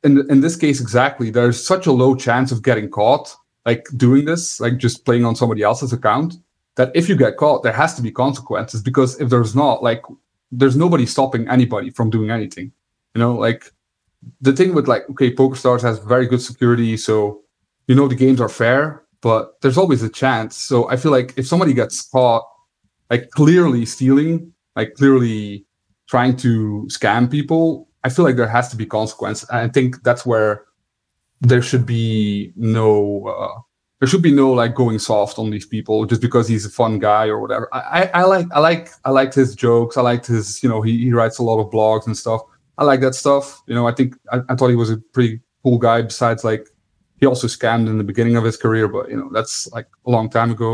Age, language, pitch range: 30-49, English, 115-135 Hz